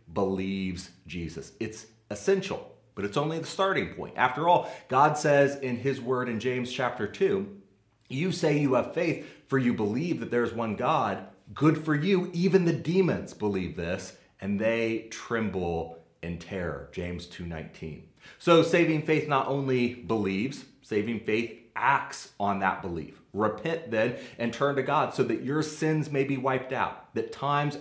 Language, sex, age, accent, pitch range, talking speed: English, male, 30-49, American, 100-140 Hz, 165 wpm